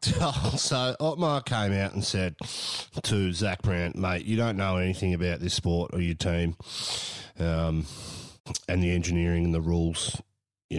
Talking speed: 155 wpm